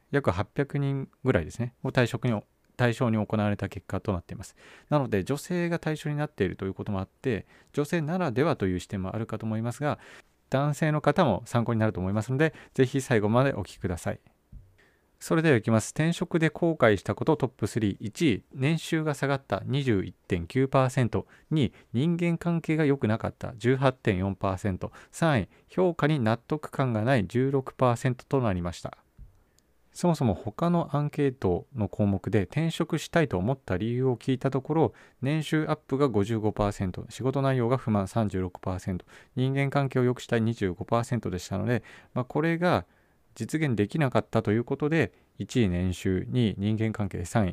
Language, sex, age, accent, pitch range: Japanese, male, 40-59, native, 100-140 Hz